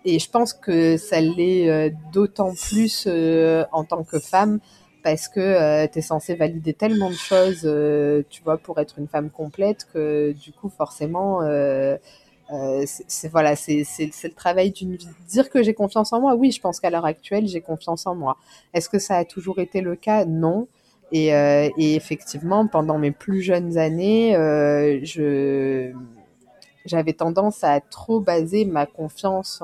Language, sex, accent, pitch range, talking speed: French, female, French, 150-195 Hz, 185 wpm